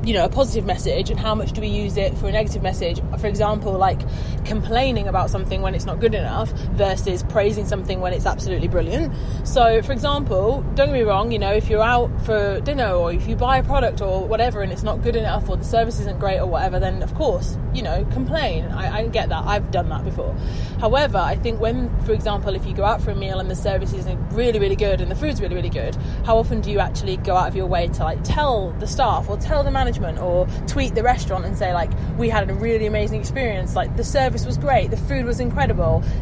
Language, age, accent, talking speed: English, 20-39, British, 245 wpm